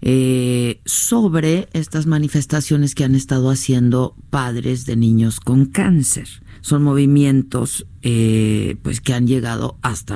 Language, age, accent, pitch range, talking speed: Spanish, 50-69, Mexican, 120-150 Hz, 125 wpm